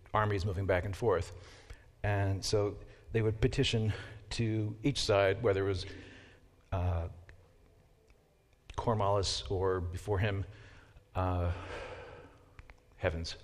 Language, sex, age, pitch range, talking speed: English, male, 50-69, 95-115 Hz, 105 wpm